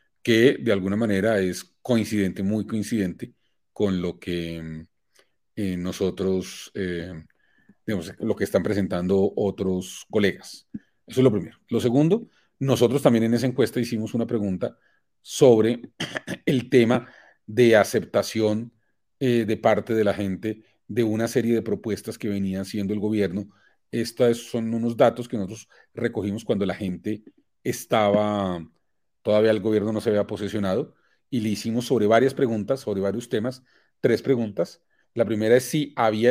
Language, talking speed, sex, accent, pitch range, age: Spanish, 150 wpm, male, Colombian, 100-125 Hz, 40-59